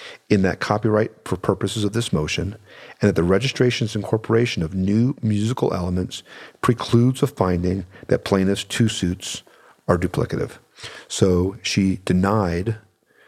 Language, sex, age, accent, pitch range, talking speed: English, male, 50-69, American, 90-105 Hz, 130 wpm